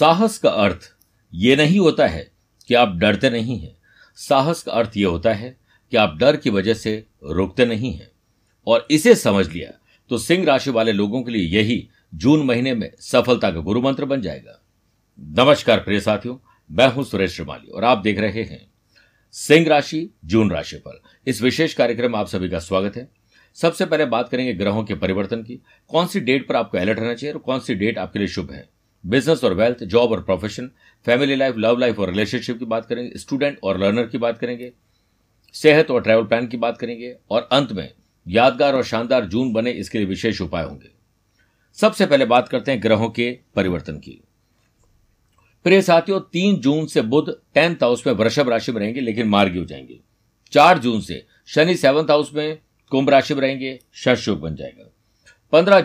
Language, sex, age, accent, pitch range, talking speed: Hindi, male, 50-69, native, 105-140 Hz, 190 wpm